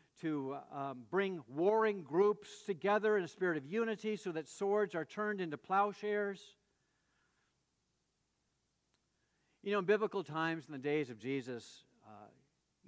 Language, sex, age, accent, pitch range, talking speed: English, male, 60-79, American, 150-230 Hz, 135 wpm